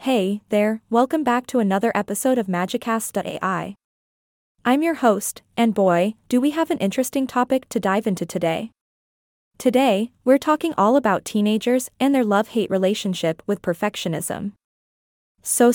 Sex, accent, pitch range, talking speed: female, American, 200-250 Hz, 140 wpm